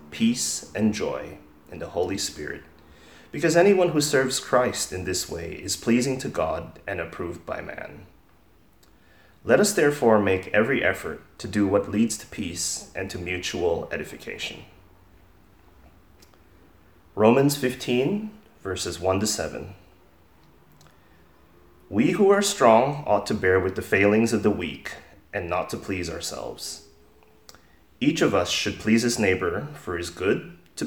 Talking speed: 140 wpm